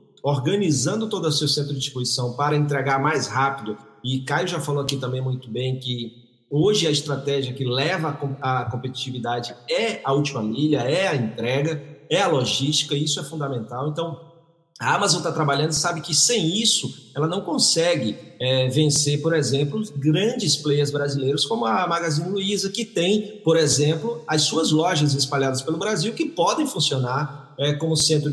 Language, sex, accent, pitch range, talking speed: Portuguese, male, Brazilian, 140-165 Hz, 170 wpm